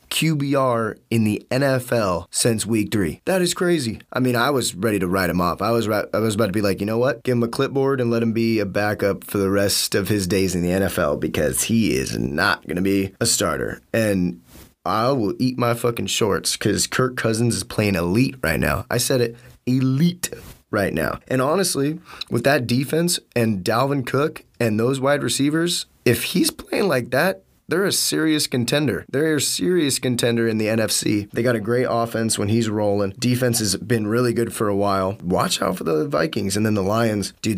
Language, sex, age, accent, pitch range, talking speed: English, male, 20-39, American, 100-125 Hz, 210 wpm